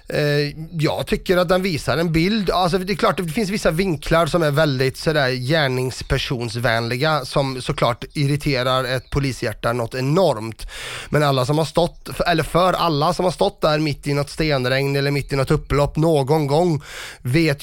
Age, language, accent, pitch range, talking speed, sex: 30-49, Swedish, native, 135-170 Hz, 175 wpm, male